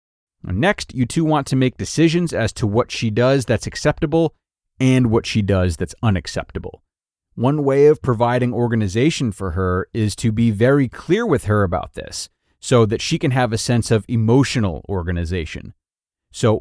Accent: American